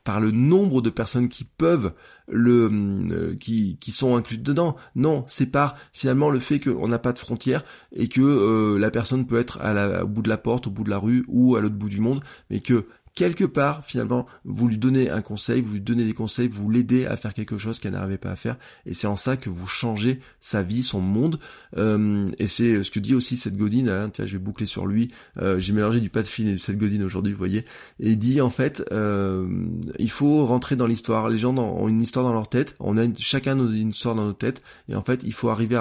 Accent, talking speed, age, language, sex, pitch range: French, 245 wpm, 20-39, French, male, 105-125 Hz